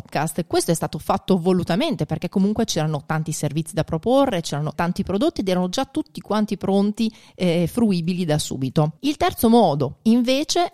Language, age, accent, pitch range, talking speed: Italian, 30-49, native, 165-225 Hz, 160 wpm